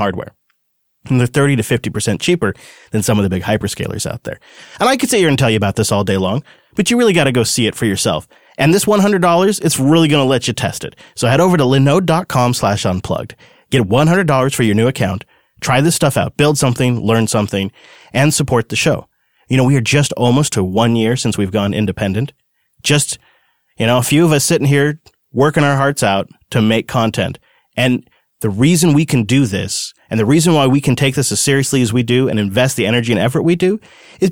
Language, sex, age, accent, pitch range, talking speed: English, male, 30-49, American, 110-150 Hz, 235 wpm